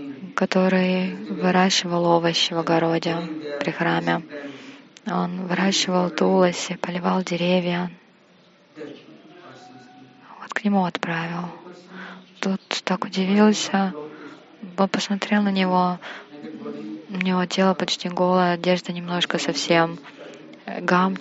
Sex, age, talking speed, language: female, 20-39, 90 wpm, Russian